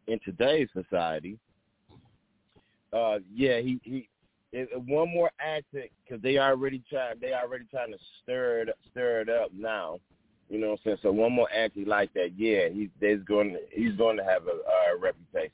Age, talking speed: 30-49, 200 wpm